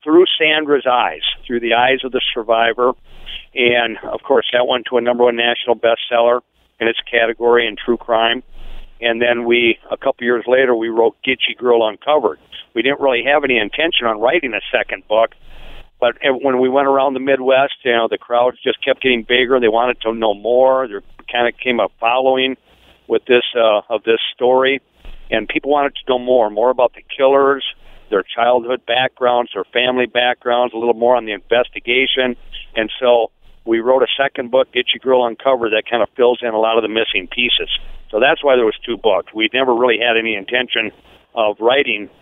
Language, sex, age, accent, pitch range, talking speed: English, male, 50-69, American, 115-130 Hz, 200 wpm